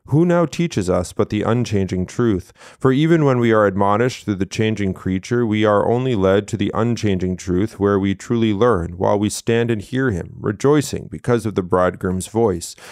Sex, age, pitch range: male, 30-49, 100-120 Hz